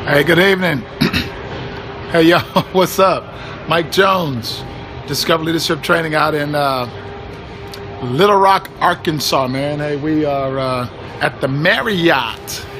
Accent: American